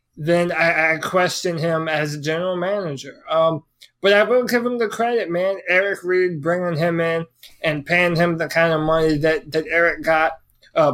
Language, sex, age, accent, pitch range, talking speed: English, male, 20-39, American, 155-180 Hz, 190 wpm